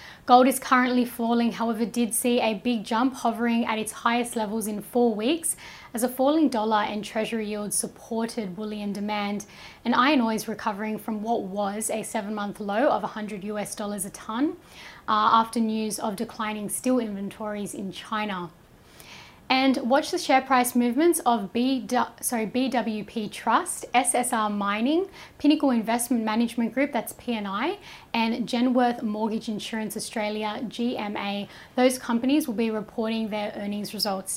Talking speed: 150 wpm